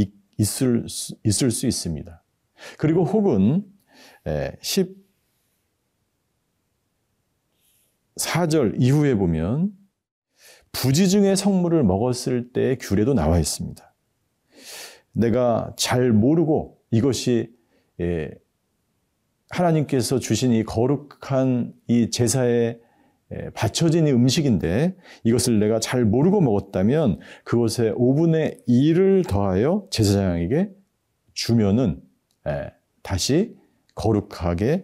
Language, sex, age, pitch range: Korean, male, 50-69, 110-170 Hz